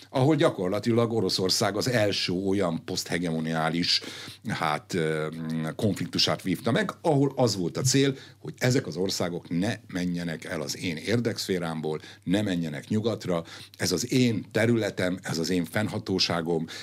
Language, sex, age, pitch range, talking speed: Hungarian, male, 60-79, 85-120 Hz, 130 wpm